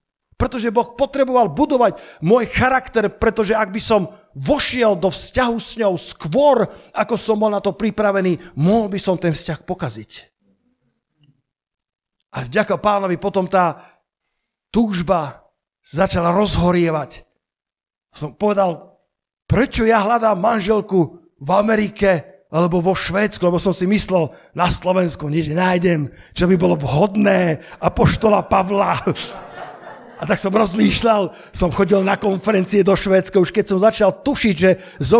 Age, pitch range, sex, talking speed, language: 50-69, 170-215 Hz, male, 135 wpm, Slovak